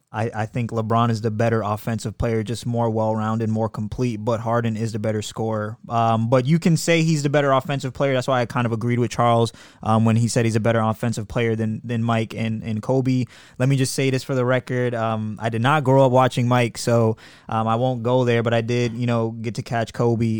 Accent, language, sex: American, English, male